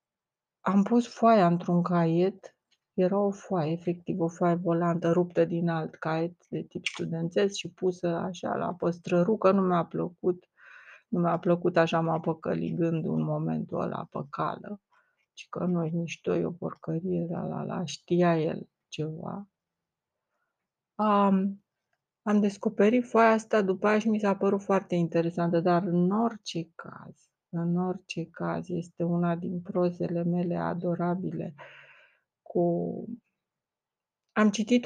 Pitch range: 170-195 Hz